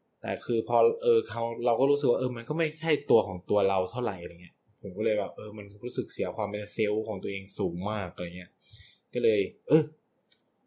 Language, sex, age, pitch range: Thai, male, 20-39, 105-135 Hz